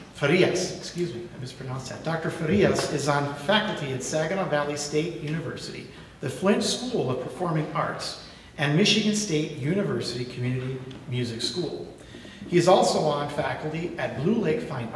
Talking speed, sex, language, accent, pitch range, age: 150 wpm, male, English, American, 135-185 Hz, 50-69